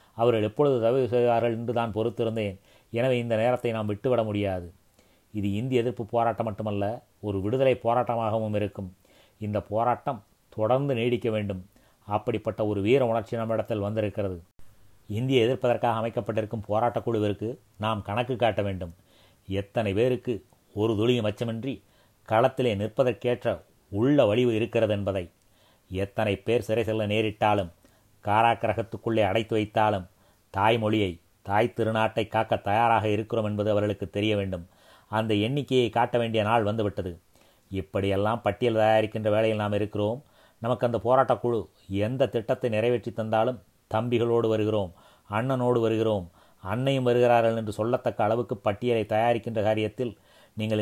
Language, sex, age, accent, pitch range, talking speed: Tamil, male, 30-49, native, 105-120 Hz, 120 wpm